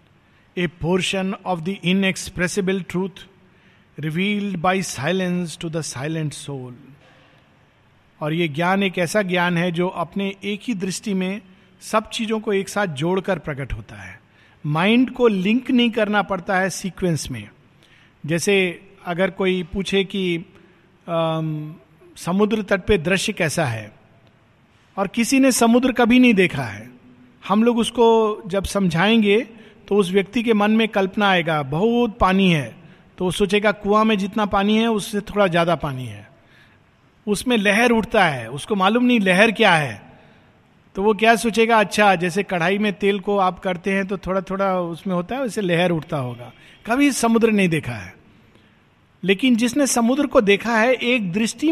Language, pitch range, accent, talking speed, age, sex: Hindi, 165-220 Hz, native, 160 wpm, 50-69, male